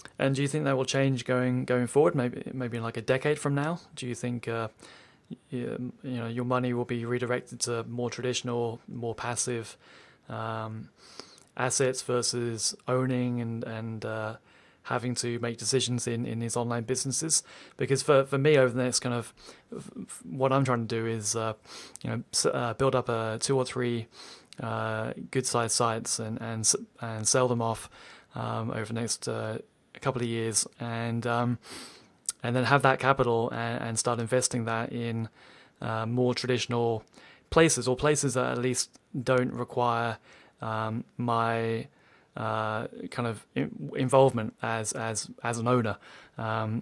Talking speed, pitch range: 175 wpm, 115-125 Hz